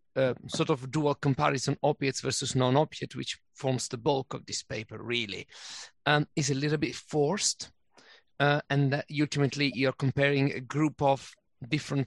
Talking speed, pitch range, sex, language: 160 wpm, 130-150 Hz, male, English